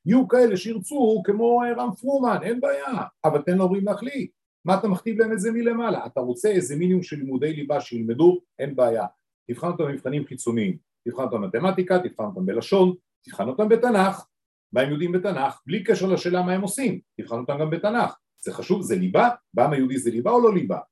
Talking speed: 195 wpm